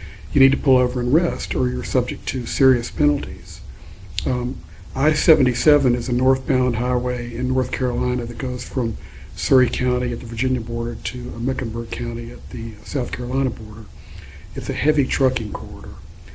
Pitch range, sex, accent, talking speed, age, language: 100-130 Hz, male, American, 160 wpm, 50-69, English